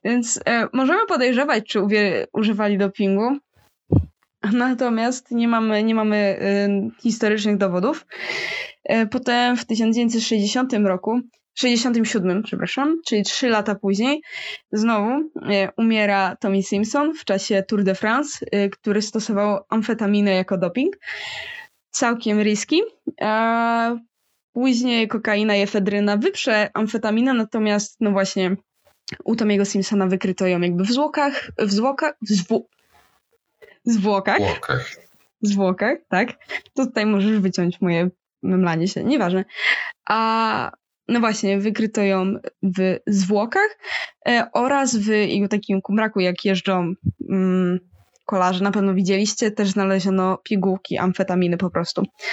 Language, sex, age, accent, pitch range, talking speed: Polish, female, 20-39, native, 195-235 Hz, 115 wpm